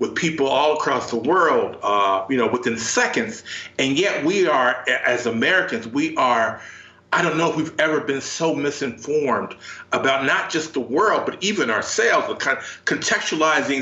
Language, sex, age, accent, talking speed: English, male, 40-59, American, 175 wpm